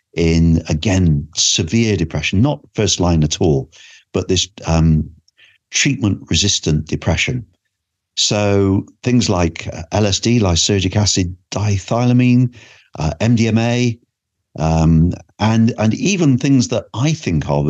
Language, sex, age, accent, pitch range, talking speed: English, male, 50-69, British, 85-120 Hz, 110 wpm